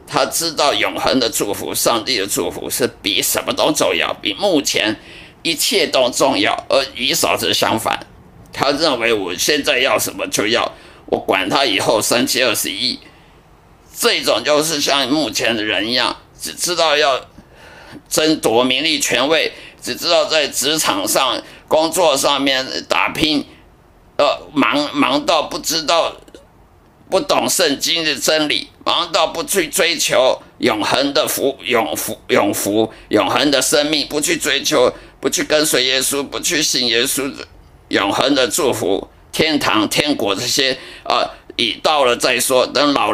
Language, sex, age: Chinese, male, 50-69